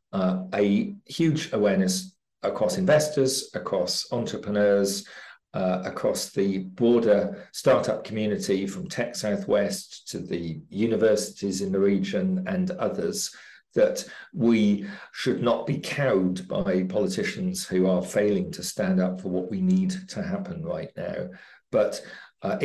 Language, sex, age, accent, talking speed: English, male, 50-69, British, 130 wpm